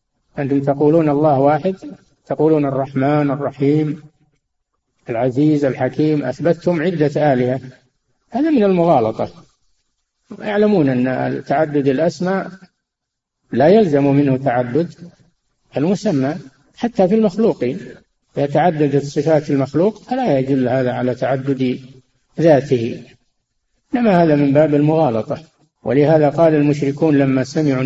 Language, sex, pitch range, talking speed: Arabic, male, 130-155 Hz, 100 wpm